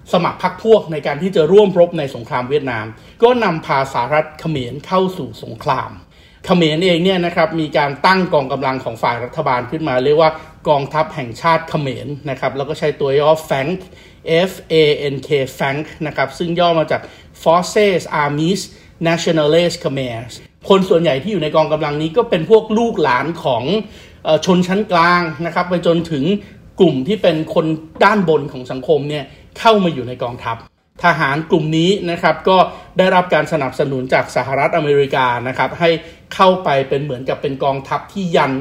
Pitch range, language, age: 135-175 Hz, Thai, 60-79